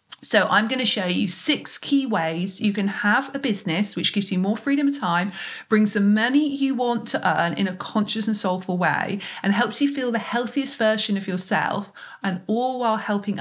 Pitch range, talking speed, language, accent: 180-240 Hz, 210 wpm, English, British